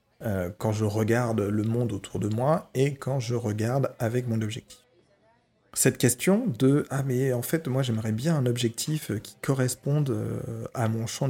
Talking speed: 175 wpm